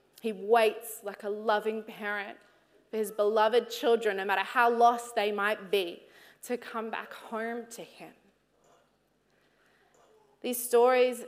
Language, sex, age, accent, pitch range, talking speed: English, female, 20-39, Australian, 205-245 Hz, 135 wpm